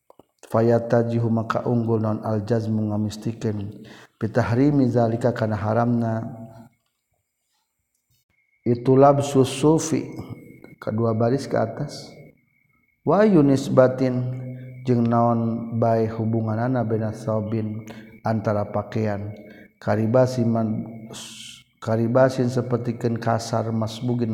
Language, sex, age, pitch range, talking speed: Indonesian, male, 50-69, 110-125 Hz, 80 wpm